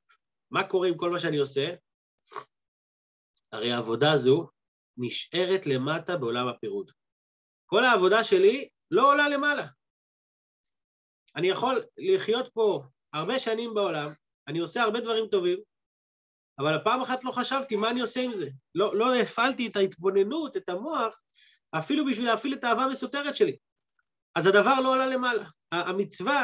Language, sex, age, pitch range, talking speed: Hebrew, male, 30-49, 170-265 Hz, 140 wpm